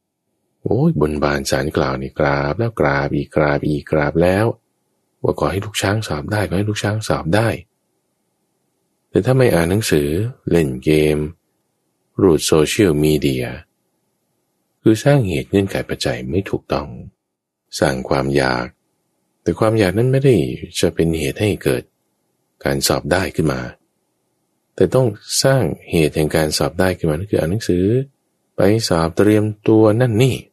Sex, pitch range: male, 70-105 Hz